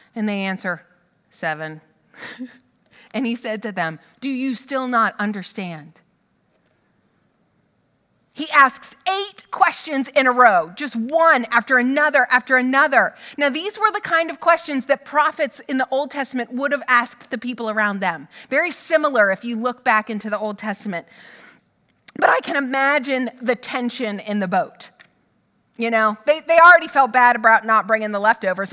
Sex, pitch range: female, 220-280 Hz